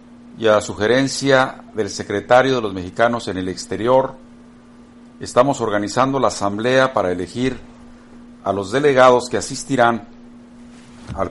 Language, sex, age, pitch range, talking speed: Spanish, male, 50-69, 115-130 Hz, 125 wpm